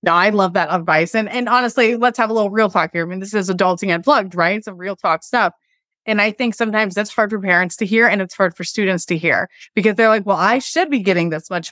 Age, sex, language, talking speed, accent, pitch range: 20-39, female, English, 270 wpm, American, 195-280 Hz